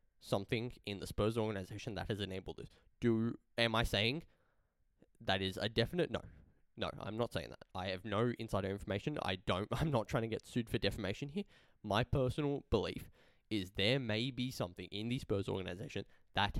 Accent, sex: Australian, male